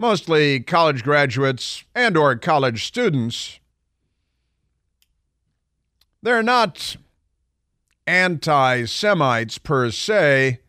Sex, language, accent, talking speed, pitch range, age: male, English, American, 65 wpm, 115-150 Hz, 50-69